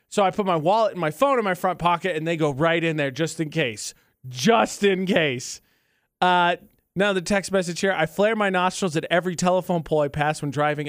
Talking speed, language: 230 wpm, English